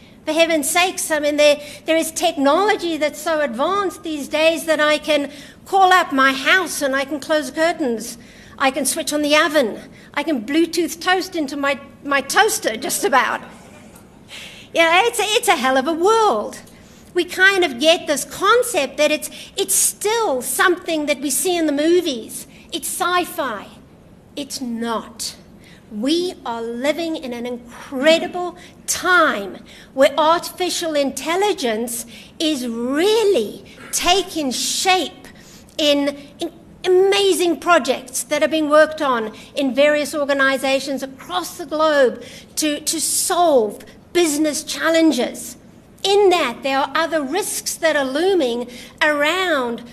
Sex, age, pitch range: female, 60-79, 270-345 Hz